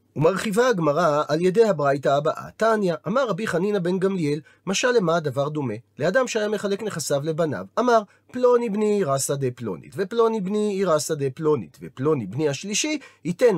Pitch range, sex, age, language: 140-200 Hz, male, 40-59, Hebrew